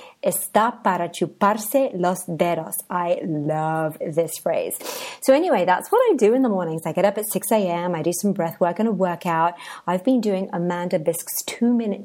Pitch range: 170-220 Hz